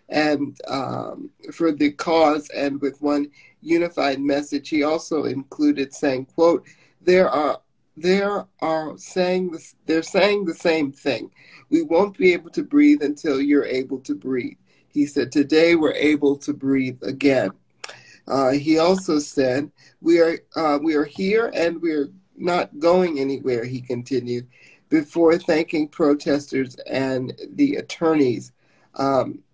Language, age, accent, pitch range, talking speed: English, 50-69, American, 140-170 Hz, 140 wpm